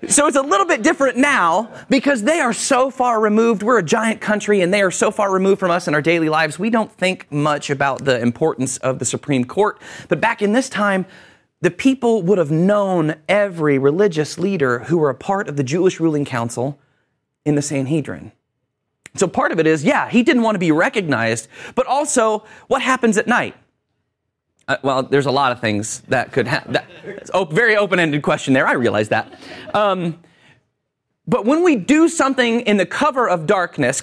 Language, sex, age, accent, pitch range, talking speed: English, male, 30-49, American, 150-225 Hz, 195 wpm